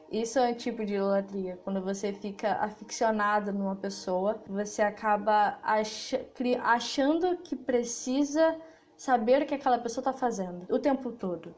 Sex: female